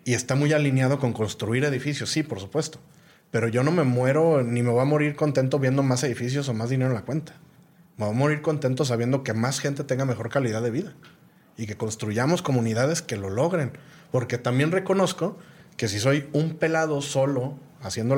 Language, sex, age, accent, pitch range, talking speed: English, male, 30-49, Mexican, 120-155 Hz, 200 wpm